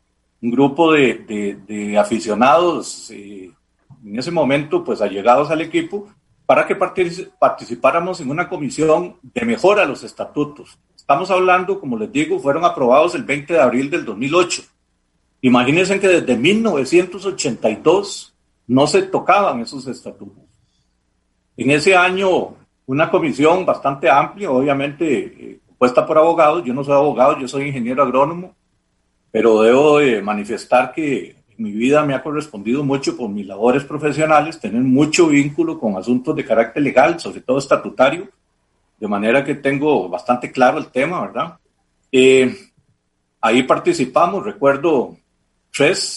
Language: Spanish